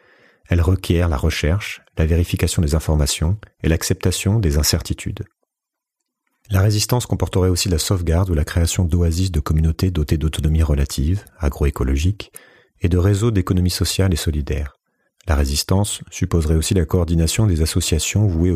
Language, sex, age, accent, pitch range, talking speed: French, male, 40-59, French, 80-95 Hz, 140 wpm